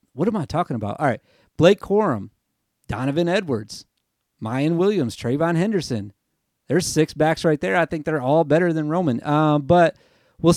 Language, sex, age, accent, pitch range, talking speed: English, male, 30-49, American, 130-185 Hz, 170 wpm